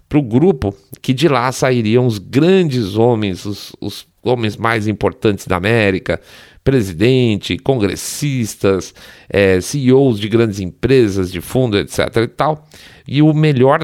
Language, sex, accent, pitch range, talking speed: Portuguese, male, Brazilian, 100-130 Hz, 140 wpm